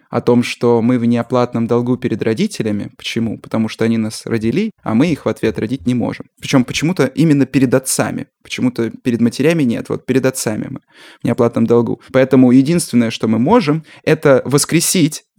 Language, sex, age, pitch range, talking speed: Russian, male, 20-39, 120-150 Hz, 180 wpm